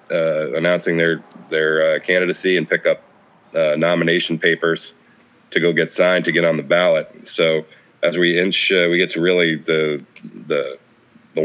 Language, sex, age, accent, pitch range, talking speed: English, male, 30-49, American, 80-90 Hz, 175 wpm